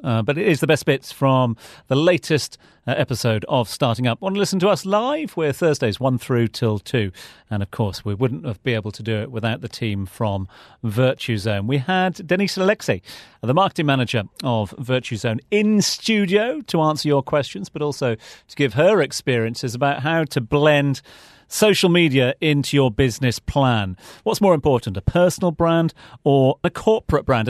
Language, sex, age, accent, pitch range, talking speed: English, male, 40-59, British, 125-170 Hz, 195 wpm